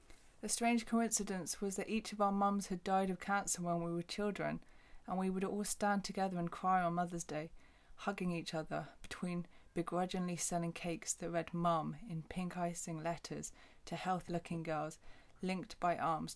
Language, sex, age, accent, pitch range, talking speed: English, female, 20-39, British, 170-200 Hz, 175 wpm